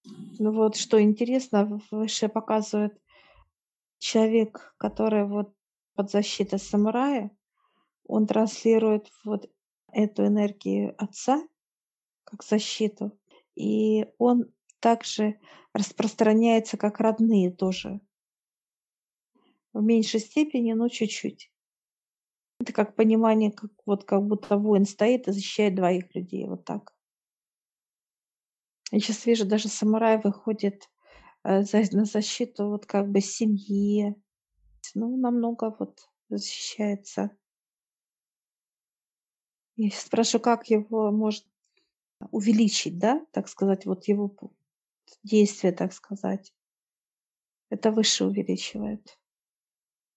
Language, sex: Russian, female